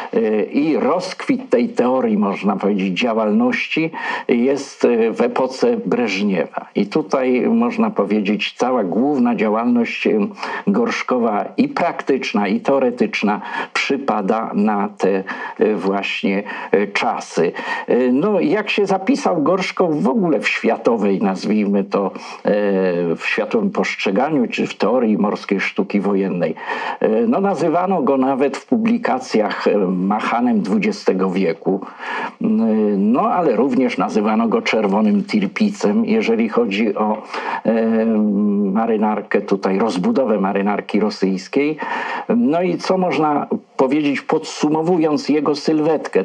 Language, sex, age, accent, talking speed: Polish, male, 50-69, native, 105 wpm